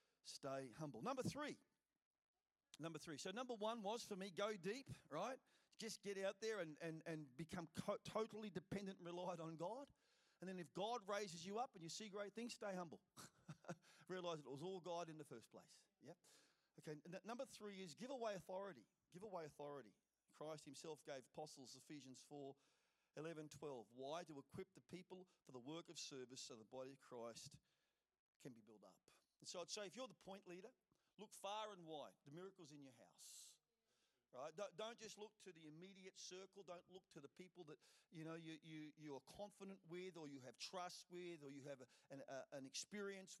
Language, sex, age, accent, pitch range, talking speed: English, male, 40-59, Australian, 160-205 Hz, 200 wpm